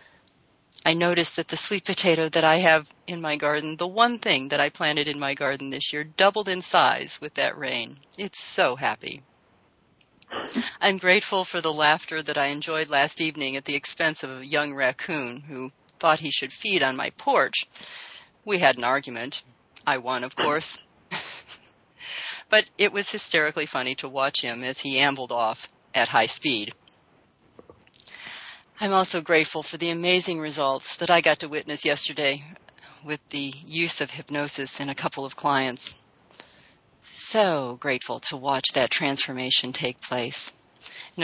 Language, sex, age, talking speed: English, female, 40-59, 165 wpm